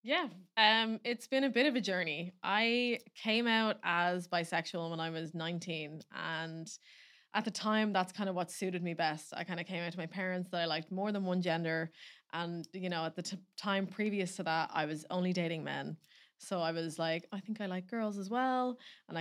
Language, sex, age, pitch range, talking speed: English, female, 20-39, 170-195 Hz, 220 wpm